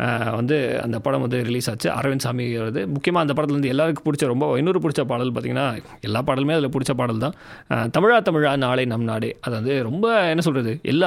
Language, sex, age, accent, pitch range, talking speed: English, male, 30-49, Indian, 120-155 Hz, 180 wpm